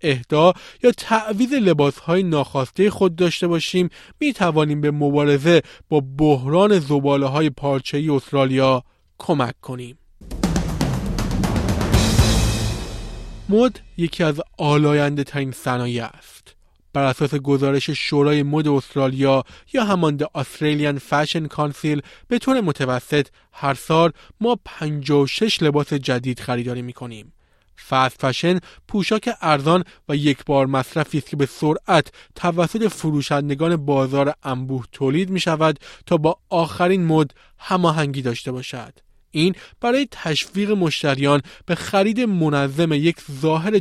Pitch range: 135-175 Hz